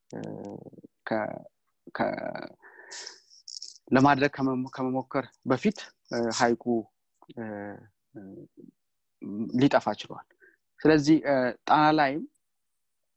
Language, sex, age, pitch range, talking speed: Amharic, male, 30-49, 120-155 Hz, 45 wpm